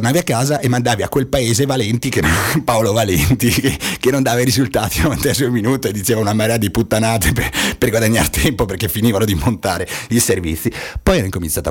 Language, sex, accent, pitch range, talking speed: Italian, male, native, 80-115 Hz, 205 wpm